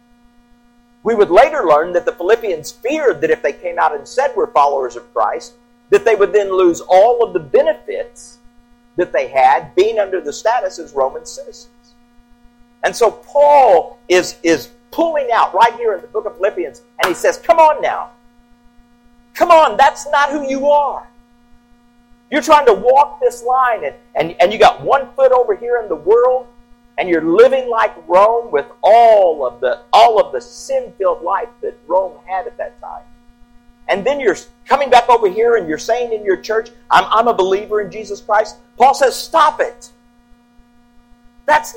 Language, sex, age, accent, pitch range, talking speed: English, male, 50-69, American, 240-295 Hz, 185 wpm